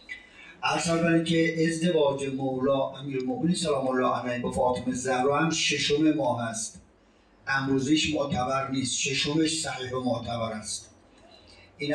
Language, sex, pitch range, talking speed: Persian, male, 125-150 Hz, 115 wpm